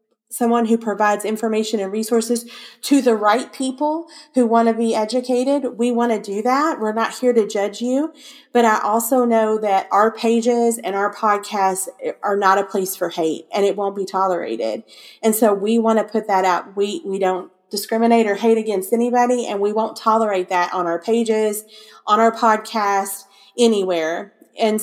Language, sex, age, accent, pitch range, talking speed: English, female, 30-49, American, 200-235 Hz, 185 wpm